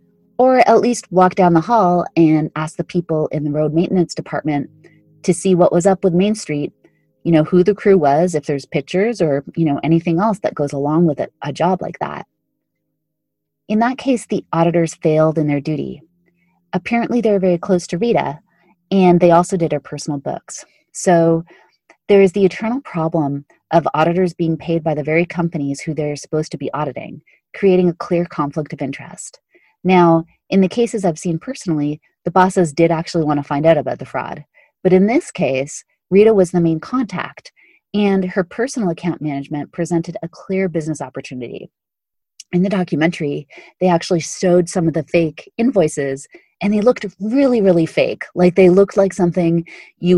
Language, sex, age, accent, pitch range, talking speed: English, female, 30-49, American, 155-190 Hz, 185 wpm